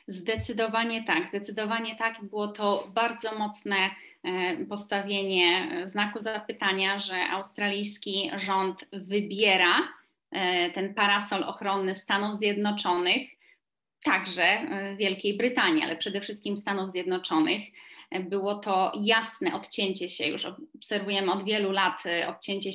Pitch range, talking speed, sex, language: 185-225 Hz, 105 wpm, female, Polish